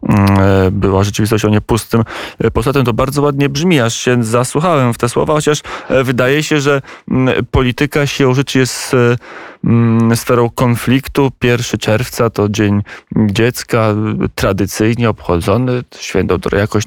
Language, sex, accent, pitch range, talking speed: Polish, male, native, 110-130 Hz, 120 wpm